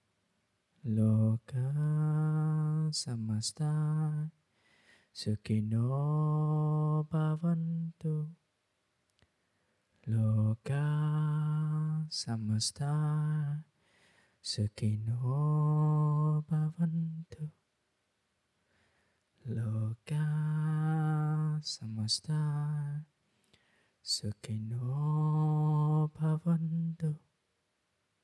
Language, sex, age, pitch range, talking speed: Vietnamese, male, 20-39, 120-155 Hz, 35 wpm